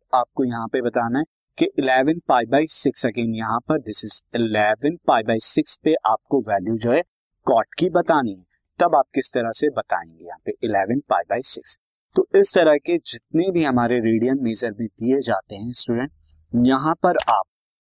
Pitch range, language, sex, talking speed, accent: 115-165 Hz, Hindi, male, 145 wpm, native